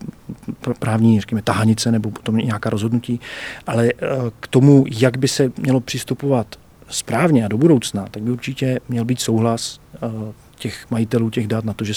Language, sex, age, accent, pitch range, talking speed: Czech, male, 40-59, native, 115-125 Hz, 160 wpm